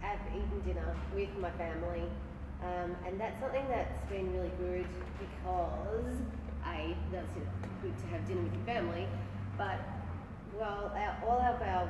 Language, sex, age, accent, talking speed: English, female, 30-49, Australian, 145 wpm